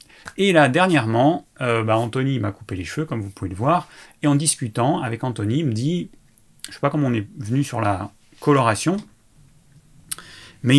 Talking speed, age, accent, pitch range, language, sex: 195 wpm, 30-49, French, 110-145 Hz, French, male